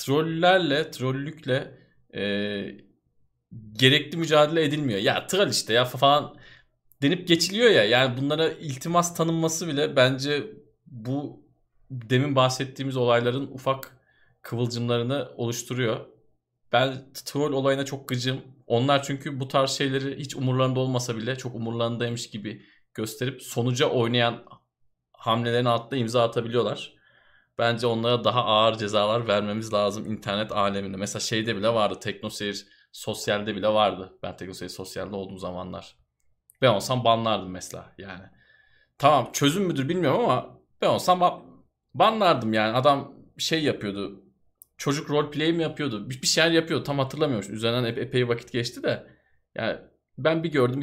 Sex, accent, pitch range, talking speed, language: male, native, 105-140 Hz, 130 wpm, Turkish